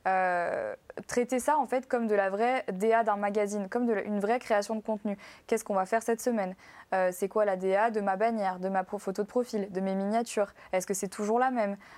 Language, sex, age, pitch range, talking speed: French, female, 20-39, 200-245 Hz, 245 wpm